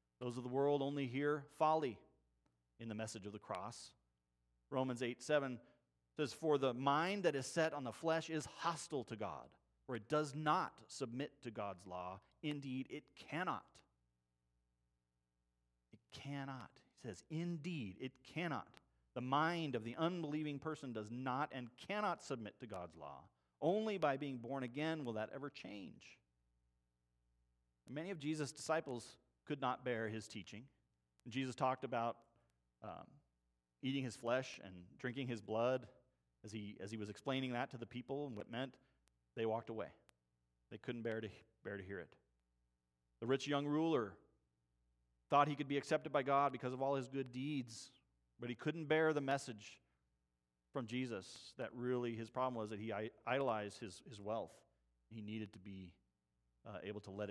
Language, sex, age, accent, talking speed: English, male, 40-59, American, 170 wpm